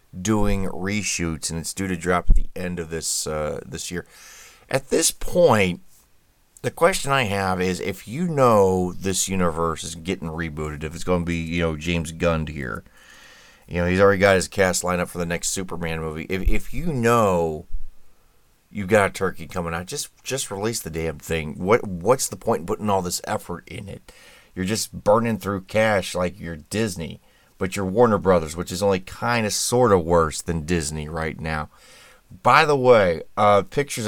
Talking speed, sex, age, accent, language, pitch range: 195 wpm, male, 30-49, American, English, 85-100 Hz